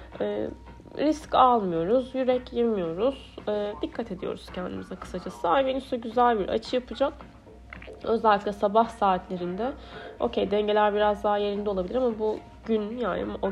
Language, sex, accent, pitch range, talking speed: Turkish, female, native, 220-270 Hz, 135 wpm